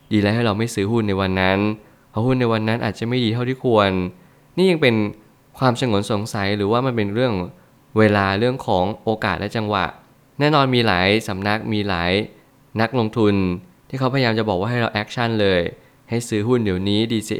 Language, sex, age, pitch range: Thai, male, 20-39, 100-120 Hz